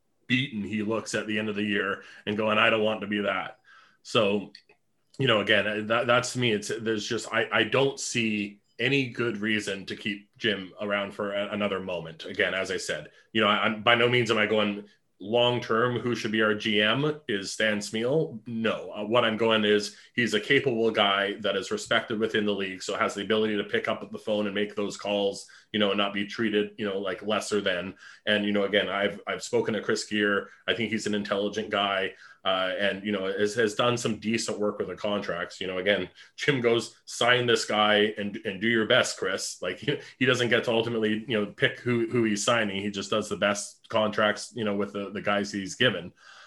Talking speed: 220 wpm